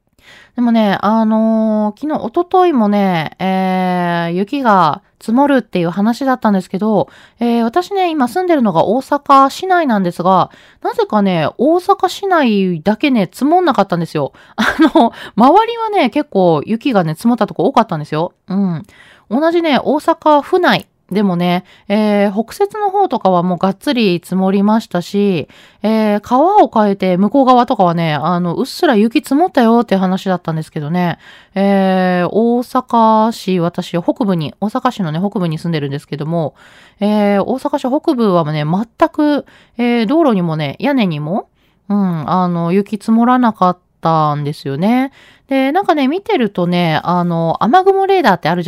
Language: Japanese